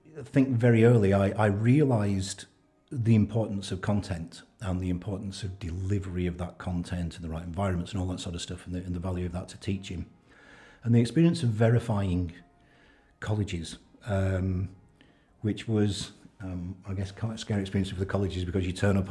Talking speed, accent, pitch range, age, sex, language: 195 wpm, British, 90-115 Hz, 50-69, male, English